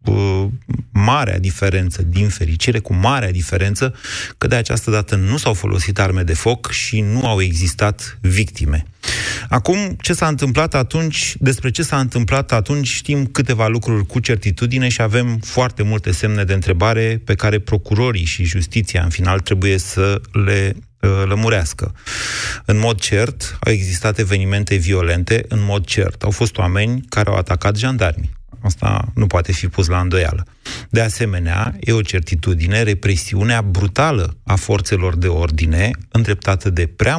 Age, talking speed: 30-49, 150 wpm